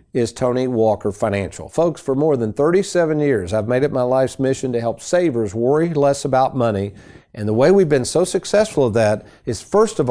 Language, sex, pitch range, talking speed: English, male, 110-160 Hz, 210 wpm